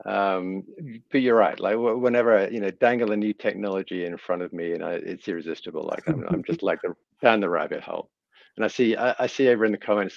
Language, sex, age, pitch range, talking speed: English, male, 50-69, 95-130 Hz, 250 wpm